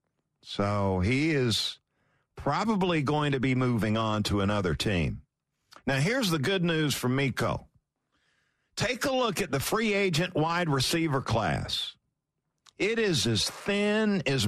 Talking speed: 140 wpm